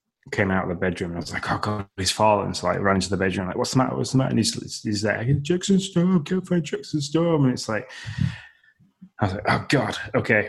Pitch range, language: 95-120 Hz, English